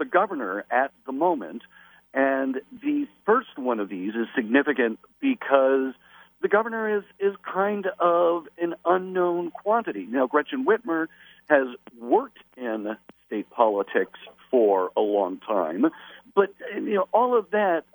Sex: male